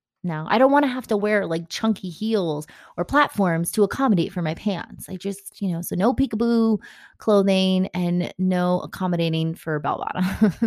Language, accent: English, American